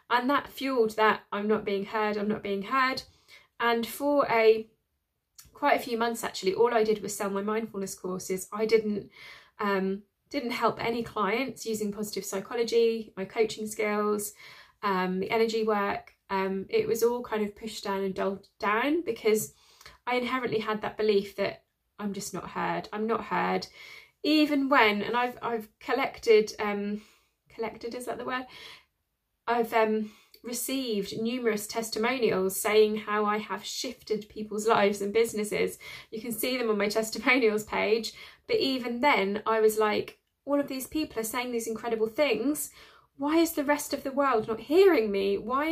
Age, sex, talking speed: 20-39, female, 170 wpm